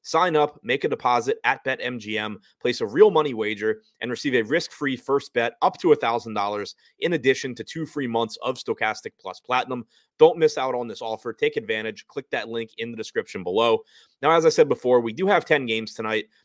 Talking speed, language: 210 wpm, English